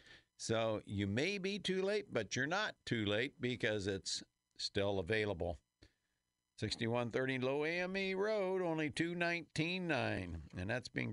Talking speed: 130 wpm